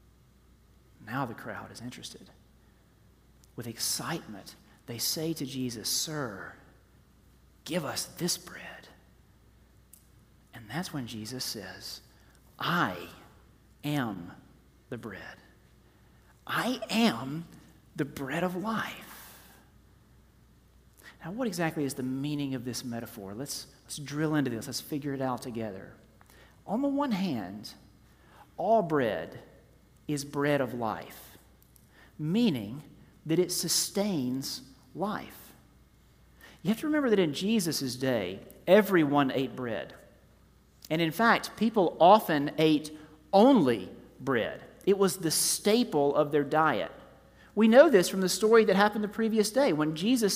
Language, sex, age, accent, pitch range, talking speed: English, male, 40-59, American, 125-205 Hz, 125 wpm